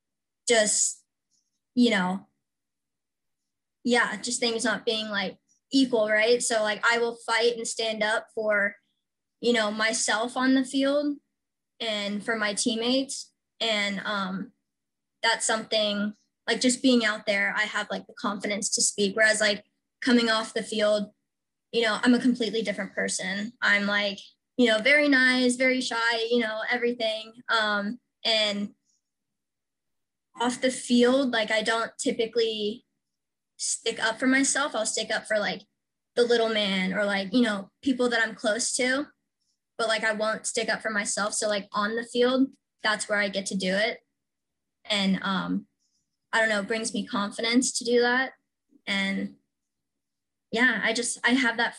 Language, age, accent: English, 20-39, American